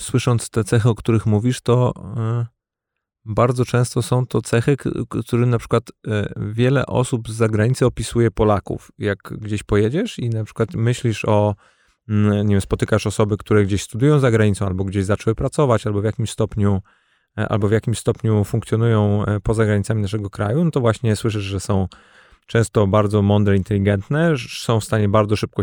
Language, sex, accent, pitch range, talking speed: Polish, male, native, 105-120 Hz, 155 wpm